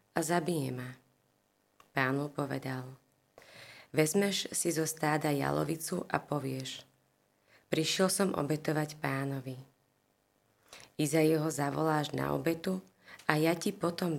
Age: 30-49